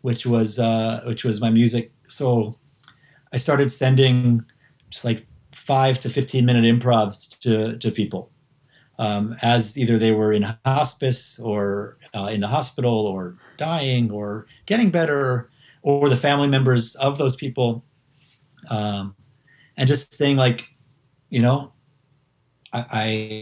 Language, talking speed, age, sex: English, 135 wpm, 50-69, male